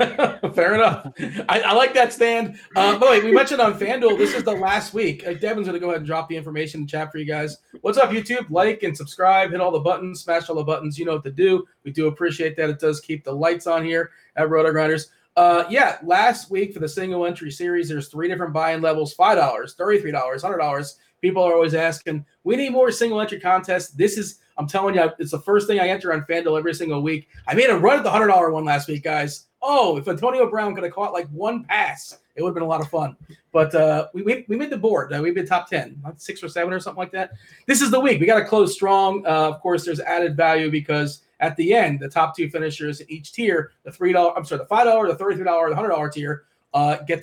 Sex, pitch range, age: male, 155-200 Hz, 30-49